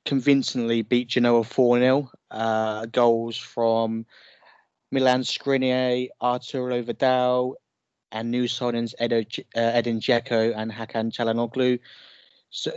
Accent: British